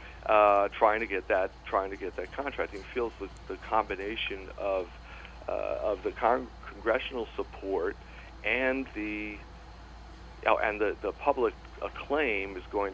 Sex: male